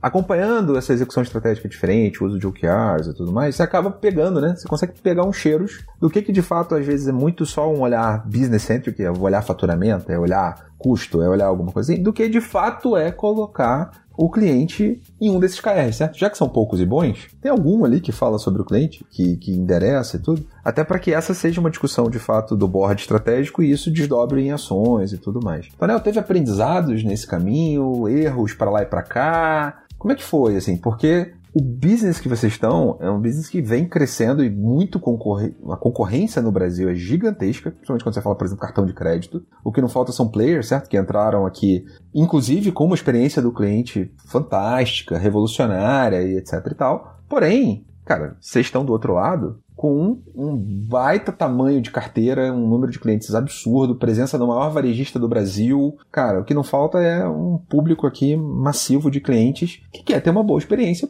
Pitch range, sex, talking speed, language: 110-165 Hz, male, 205 wpm, Portuguese